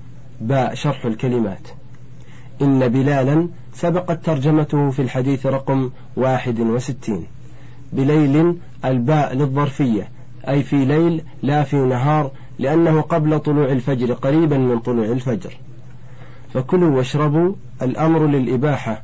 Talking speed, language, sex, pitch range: 105 wpm, Arabic, male, 125-145 Hz